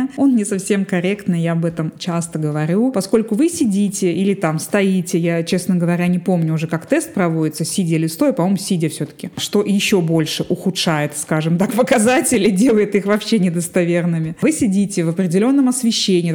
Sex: female